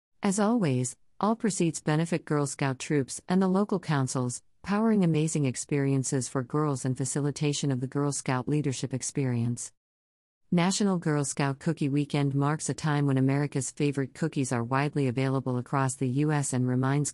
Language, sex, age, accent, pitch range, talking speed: English, female, 50-69, American, 130-160 Hz, 160 wpm